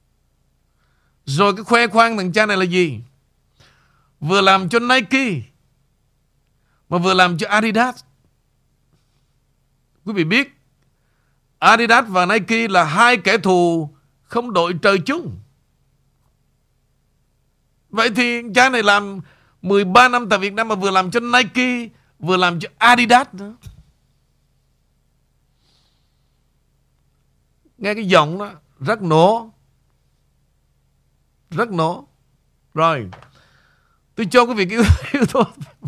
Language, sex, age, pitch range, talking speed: Vietnamese, male, 50-69, 145-225 Hz, 110 wpm